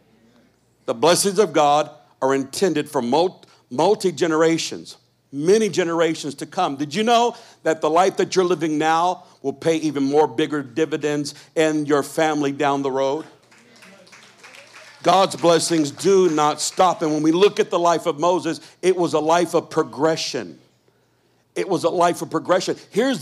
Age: 60-79